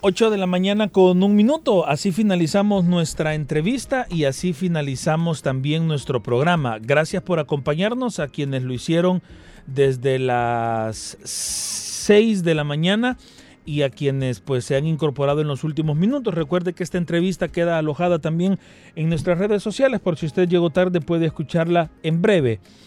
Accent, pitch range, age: Mexican, 135-180 Hz, 40-59